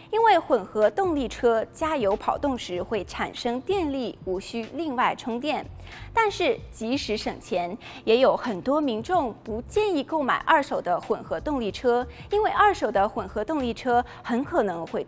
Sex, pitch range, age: female, 220-325 Hz, 20-39